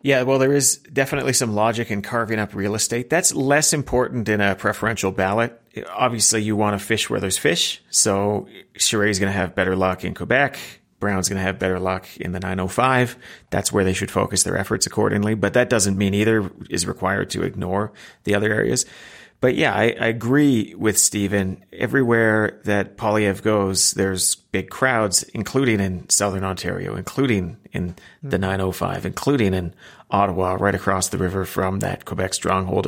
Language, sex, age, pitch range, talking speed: English, male, 30-49, 100-120 Hz, 180 wpm